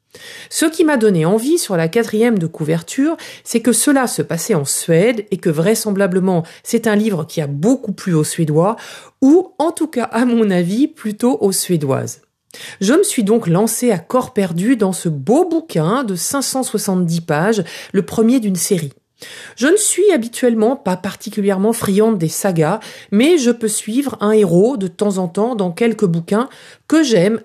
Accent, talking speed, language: French, 180 wpm, French